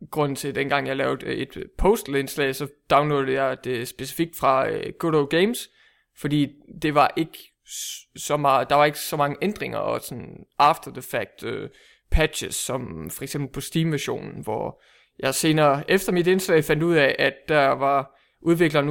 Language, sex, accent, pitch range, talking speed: English, male, Danish, 145-205 Hz, 170 wpm